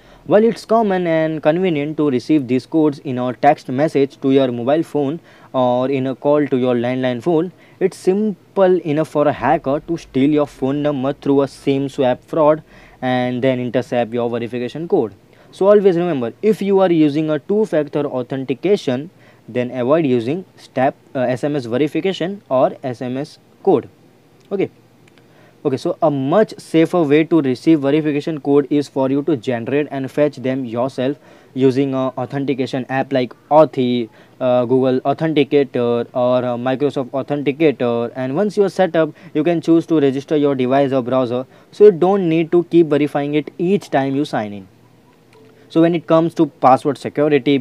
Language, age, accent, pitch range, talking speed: English, 20-39, Indian, 130-160 Hz, 165 wpm